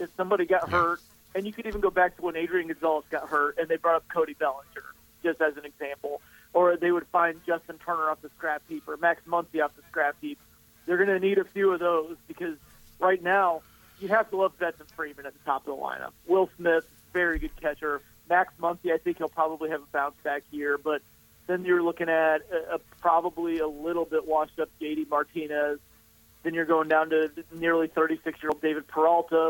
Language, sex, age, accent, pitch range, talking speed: English, male, 40-59, American, 155-180 Hz, 210 wpm